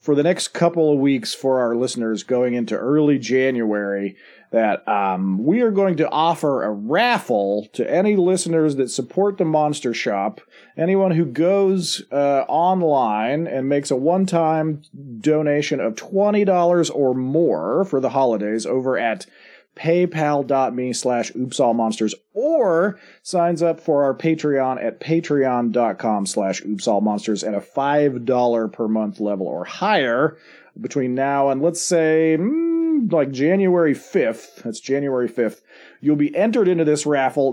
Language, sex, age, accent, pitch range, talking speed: English, male, 40-59, American, 125-180 Hz, 140 wpm